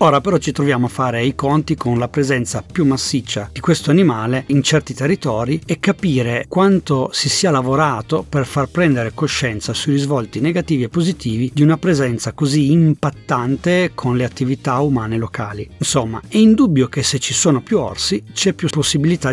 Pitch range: 120-155 Hz